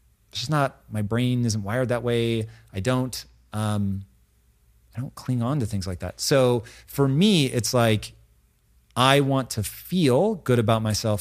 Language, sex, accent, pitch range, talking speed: English, male, American, 100-120 Hz, 170 wpm